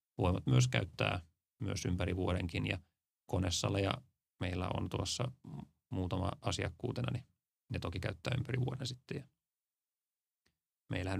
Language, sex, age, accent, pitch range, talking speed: Finnish, male, 30-49, native, 90-110 Hz, 105 wpm